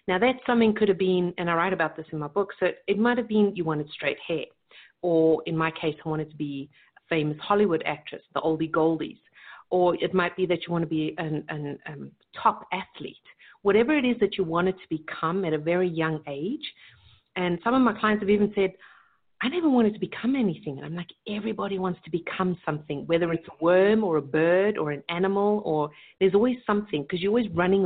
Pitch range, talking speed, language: 160-205 Hz, 225 wpm, English